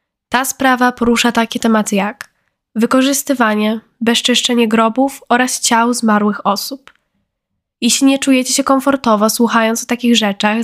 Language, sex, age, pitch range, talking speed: Polish, female, 10-29, 220-260 Hz, 125 wpm